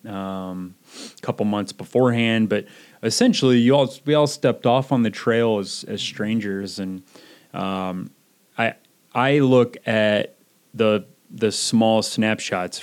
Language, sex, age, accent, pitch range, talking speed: English, male, 30-49, American, 95-110 Hz, 130 wpm